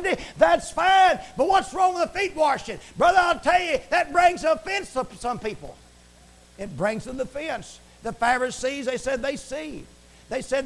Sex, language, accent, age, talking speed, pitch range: male, English, American, 50-69, 180 wpm, 230-300 Hz